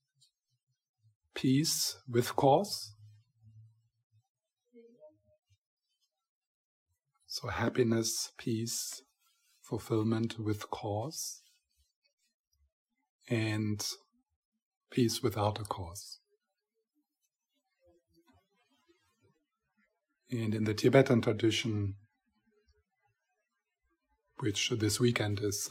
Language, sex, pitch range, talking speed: English, male, 105-155 Hz, 55 wpm